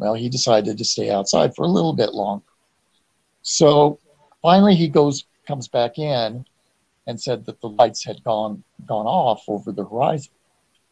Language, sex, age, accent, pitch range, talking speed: English, male, 50-69, American, 110-140 Hz, 165 wpm